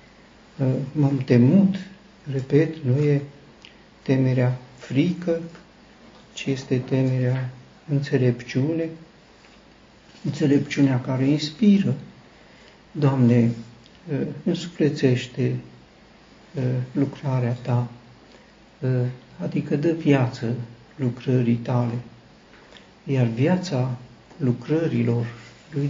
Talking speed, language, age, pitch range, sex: 65 wpm, Romanian, 60-79, 125-145 Hz, male